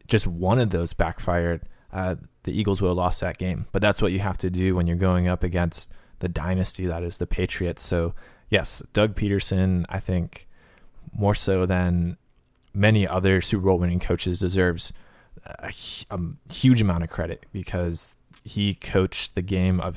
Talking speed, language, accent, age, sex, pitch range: 175 wpm, English, American, 20-39, male, 85-100 Hz